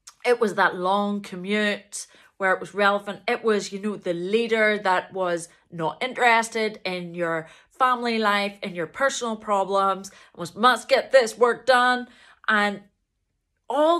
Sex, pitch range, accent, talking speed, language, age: female, 195-250 Hz, British, 155 wpm, English, 30-49